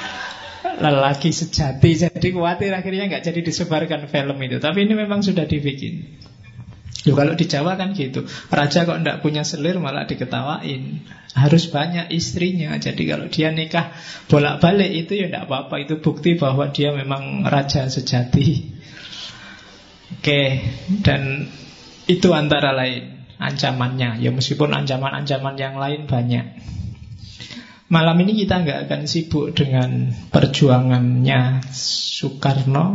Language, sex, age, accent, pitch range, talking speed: Indonesian, male, 20-39, native, 130-160 Hz, 120 wpm